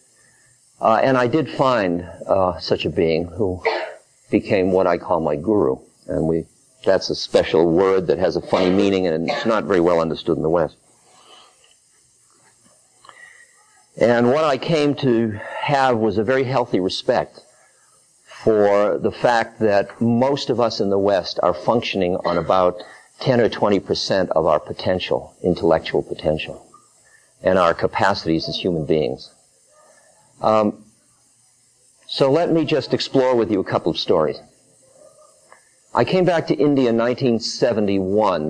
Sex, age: male, 50-69